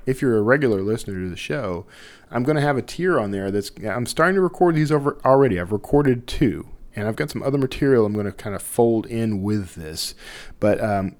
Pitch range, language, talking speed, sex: 100-135 Hz, English, 235 wpm, male